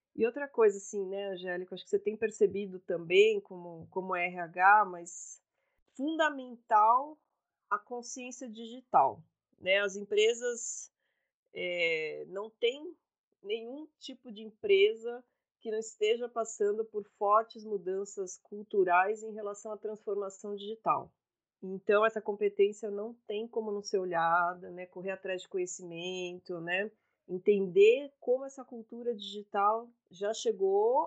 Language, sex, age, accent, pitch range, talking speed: Portuguese, female, 30-49, Brazilian, 190-235 Hz, 125 wpm